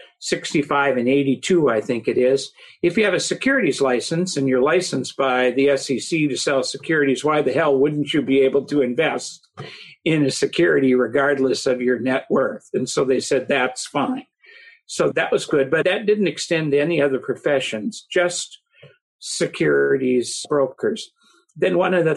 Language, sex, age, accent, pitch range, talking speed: English, male, 50-69, American, 130-180 Hz, 175 wpm